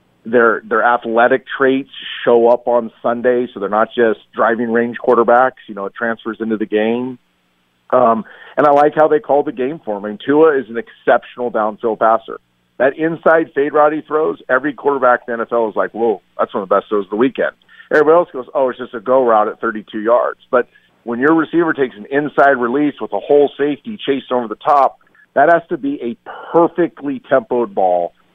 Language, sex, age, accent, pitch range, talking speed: English, male, 40-59, American, 115-145 Hz, 205 wpm